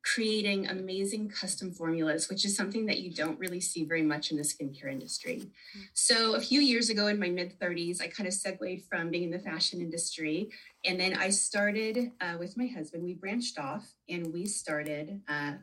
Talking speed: 195 wpm